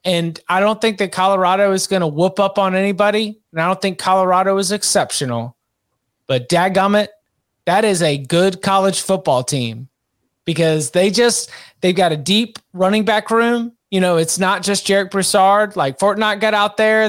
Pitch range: 165-200 Hz